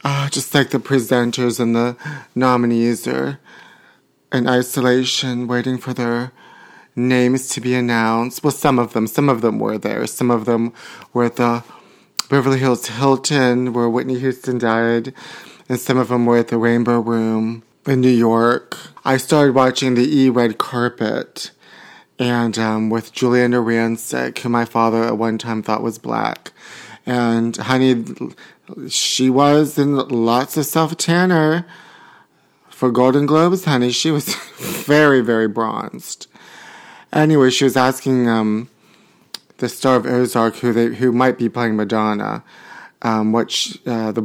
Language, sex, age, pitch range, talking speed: English, male, 30-49, 115-130 Hz, 150 wpm